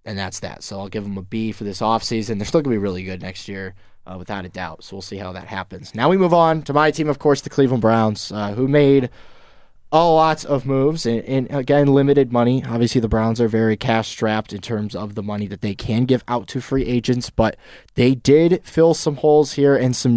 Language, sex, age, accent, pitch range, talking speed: English, male, 20-39, American, 105-135 Hz, 255 wpm